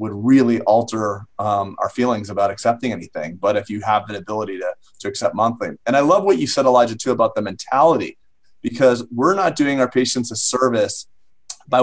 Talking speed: 200 wpm